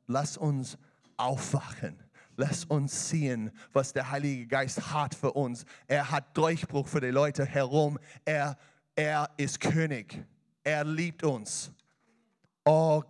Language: German